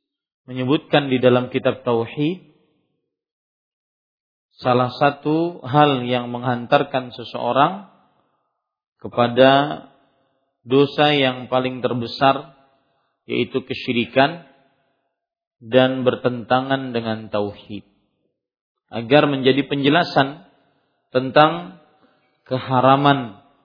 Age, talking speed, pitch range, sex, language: 40-59, 70 wpm, 120-145 Hz, male, Malay